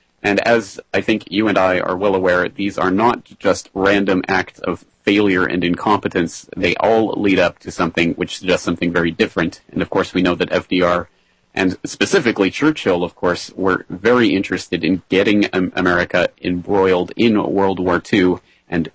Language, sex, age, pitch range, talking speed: English, male, 30-49, 90-110 Hz, 175 wpm